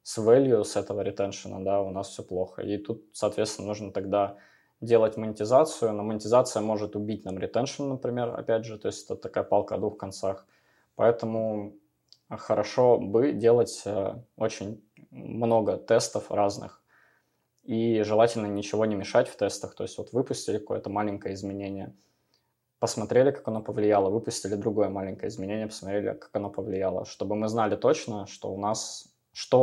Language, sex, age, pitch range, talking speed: Russian, male, 20-39, 100-110 Hz, 155 wpm